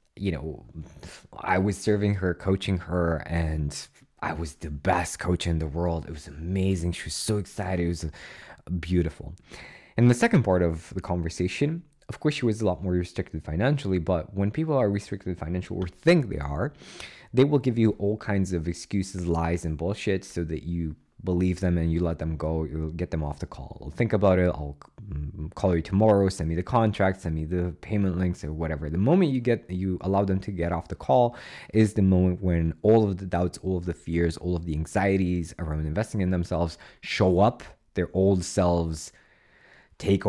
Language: English